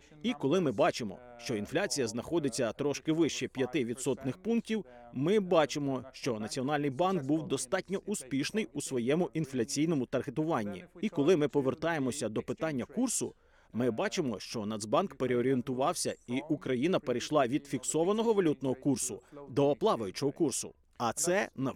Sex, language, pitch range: male, Ukrainian, 130-165 Hz